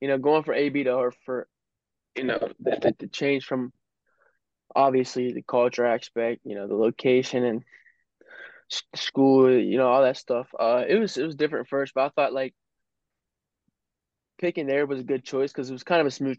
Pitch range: 125-140 Hz